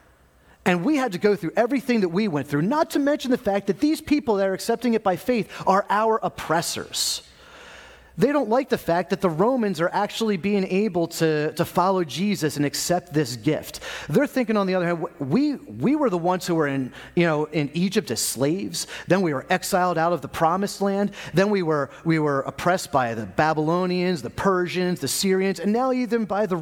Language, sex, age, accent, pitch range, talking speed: English, male, 30-49, American, 140-205 Hz, 215 wpm